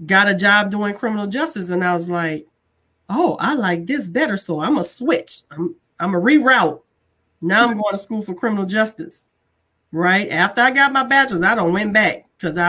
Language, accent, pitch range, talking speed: English, American, 180-235 Hz, 205 wpm